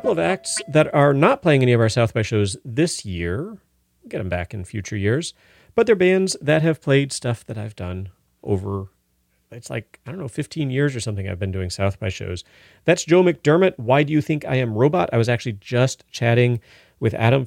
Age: 40-59